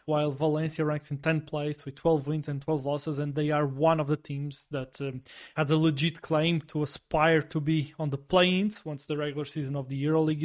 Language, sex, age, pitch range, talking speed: English, male, 20-39, 145-165 Hz, 225 wpm